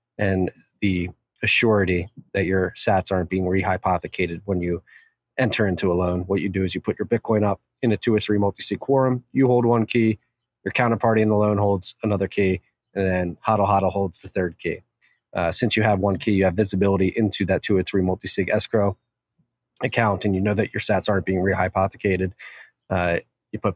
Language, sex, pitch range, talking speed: English, male, 95-110 Hz, 200 wpm